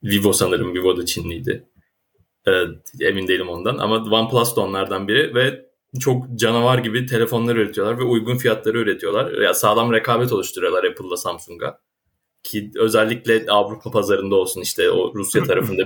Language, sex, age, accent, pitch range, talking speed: Turkish, male, 30-49, native, 110-160 Hz, 145 wpm